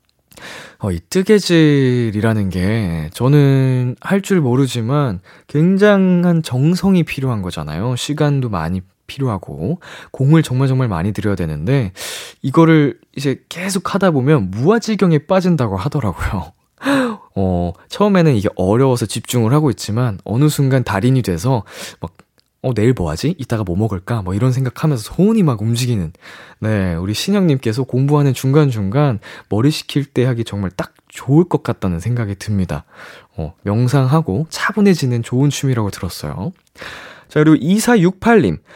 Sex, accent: male, native